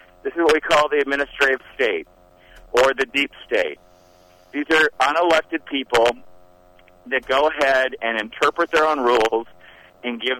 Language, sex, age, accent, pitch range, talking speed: English, male, 50-69, American, 110-140 Hz, 150 wpm